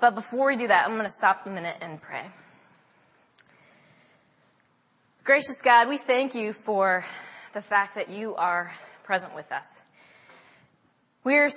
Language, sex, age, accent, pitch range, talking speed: English, female, 20-39, American, 180-230 Hz, 150 wpm